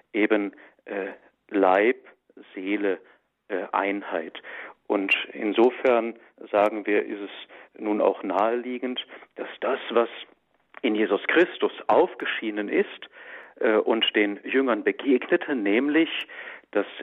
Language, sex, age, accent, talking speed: German, male, 50-69, German, 105 wpm